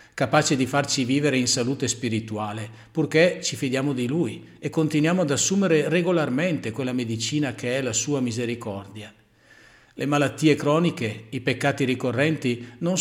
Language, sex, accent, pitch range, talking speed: Italian, male, native, 115-155 Hz, 145 wpm